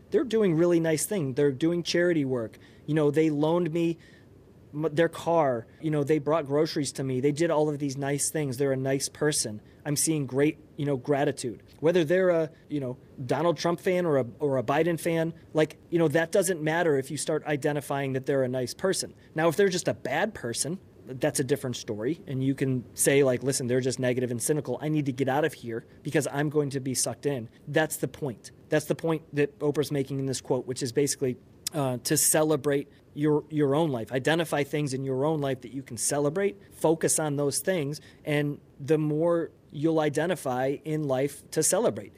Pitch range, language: 130-160 Hz, English